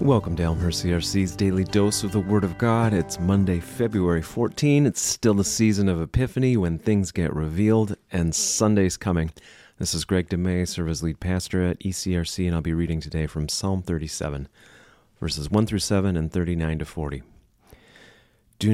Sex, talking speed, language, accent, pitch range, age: male, 175 wpm, English, American, 80-95 Hz, 30-49